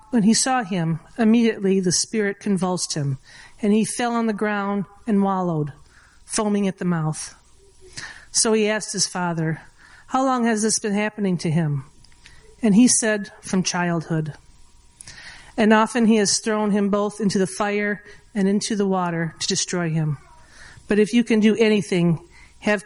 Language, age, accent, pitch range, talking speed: English, 40-59, American, 175-215 Hz, 165 wpm